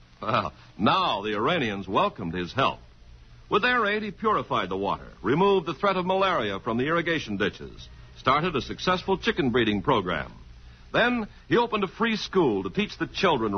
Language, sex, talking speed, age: English, male, 170 wpm, 60-79